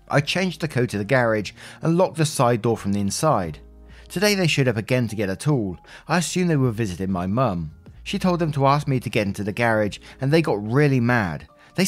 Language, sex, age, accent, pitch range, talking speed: English, male, 20-39, British, 110-145 Hz, 240 wpm